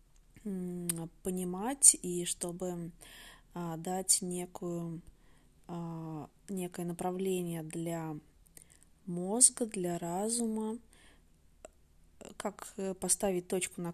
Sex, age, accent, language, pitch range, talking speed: female, 20-39, native, Russian, 170-200 Hz, 65 wpm